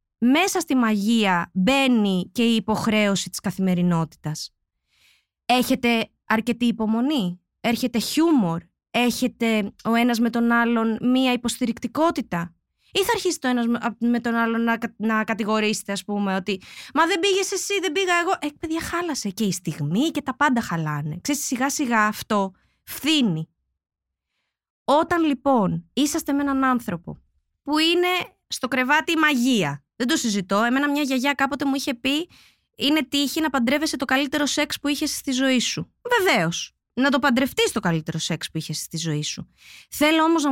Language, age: Greek, 20-39